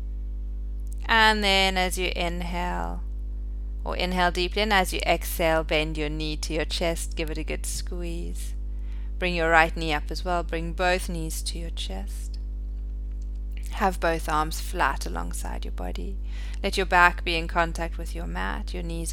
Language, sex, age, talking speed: English, female, 30-49, 170 wpm